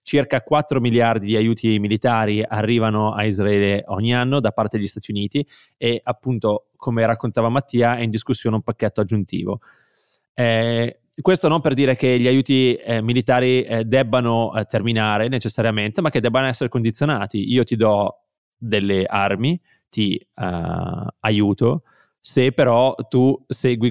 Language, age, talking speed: Italian, 20-39, 150 wpm